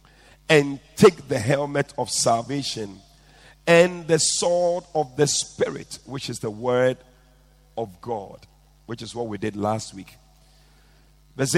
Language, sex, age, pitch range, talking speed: English, male, 50-69, 125-155 Hz, 135 wpm